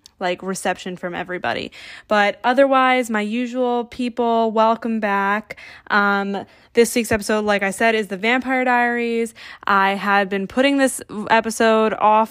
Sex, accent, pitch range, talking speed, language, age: female, American, 200-240 Hz, 140 wpm, English, 10-29